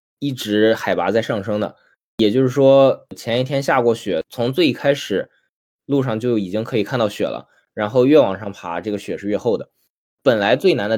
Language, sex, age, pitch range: Chinese, male, 20-39, 105-135 Hz